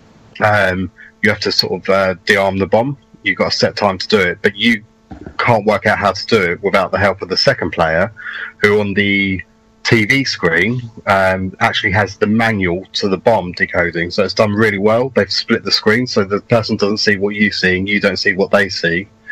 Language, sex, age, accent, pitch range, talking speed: English, male, 30-49, British, 95-115 Hz, 225 wpm